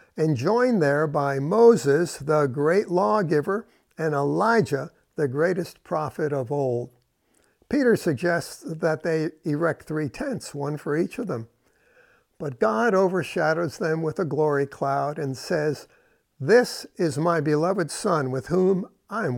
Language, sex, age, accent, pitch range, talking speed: English, male, 60-79, American, 150-195 Hz, 140 wpm